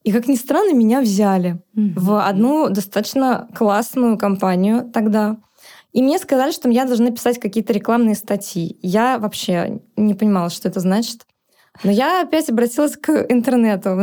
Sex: female